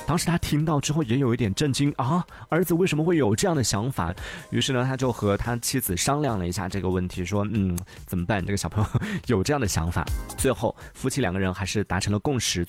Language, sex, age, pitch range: Chinese, male, 20-39, 90-120 Hz